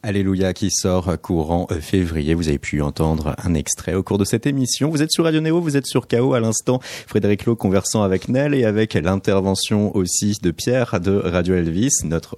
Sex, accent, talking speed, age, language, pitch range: male, French, 205 wpm, 30-49, French, 85-110 Hz